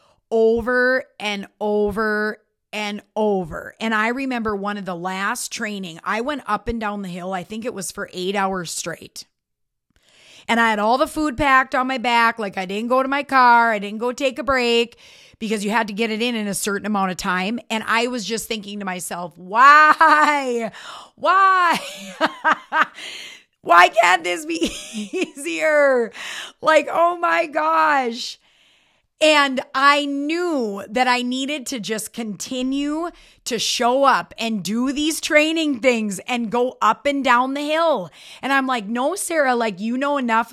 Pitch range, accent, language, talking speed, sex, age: 215-285 Hz, American, English, 170 wpm, female, 30-49